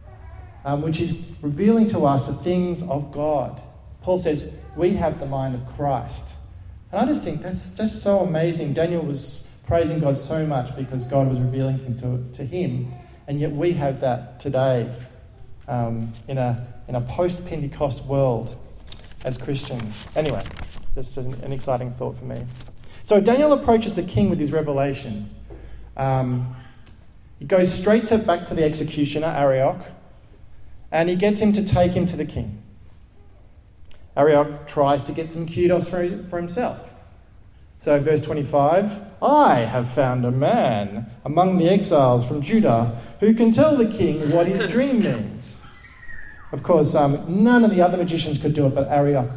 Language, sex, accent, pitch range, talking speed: English, male, Australian, 125-175 Hz, 165 wpm